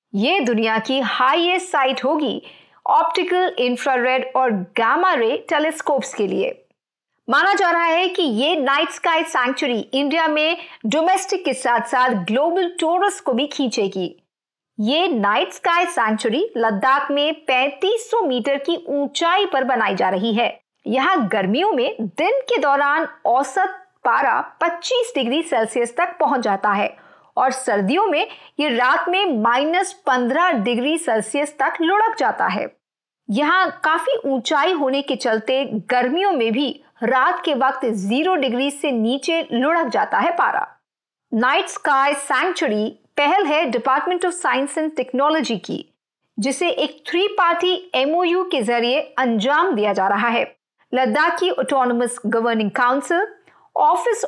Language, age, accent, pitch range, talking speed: Hindi, 50-69, native, 245-345 Hz, 140 wpm